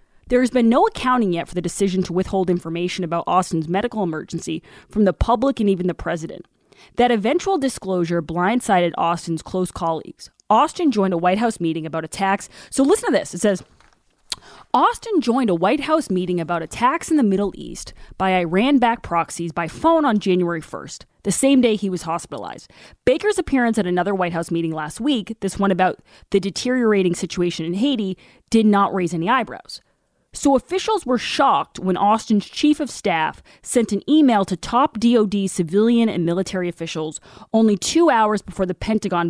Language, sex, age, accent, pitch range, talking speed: English, female, 20-39, American, 175-245 Hz, 180 wpm